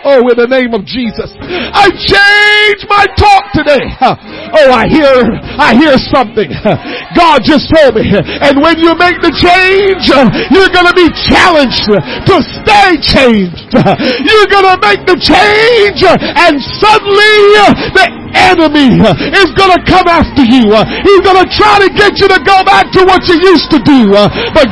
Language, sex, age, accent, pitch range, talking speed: English, male, 50-69, American, 265-370 Hz, 165 wpm